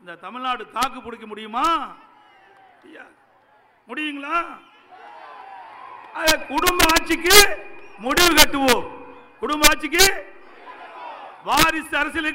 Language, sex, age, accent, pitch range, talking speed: English, male, 50-69, Indian, 255-315 Hz, 70 wpm